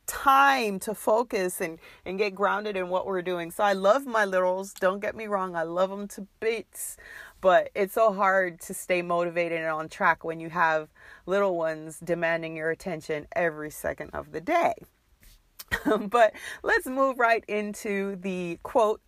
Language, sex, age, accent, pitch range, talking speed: English, female, 40-59, American, 180-225 Hz, 175 wpm